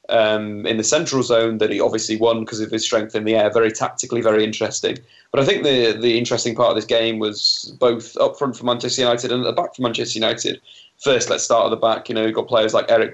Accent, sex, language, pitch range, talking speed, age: British, male, English, 110-120 Hz, 255 wpm, 20-39